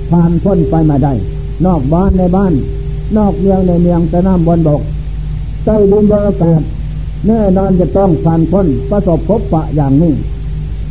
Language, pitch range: Thai, 150-195 Hz